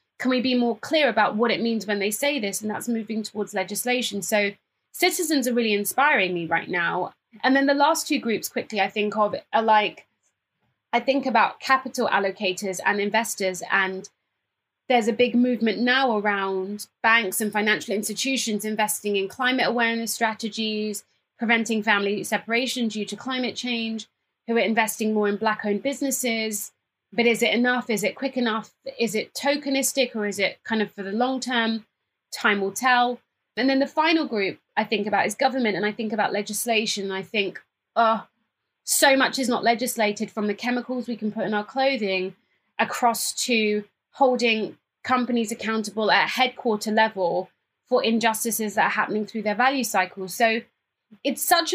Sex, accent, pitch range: female, British, 210-250 Hz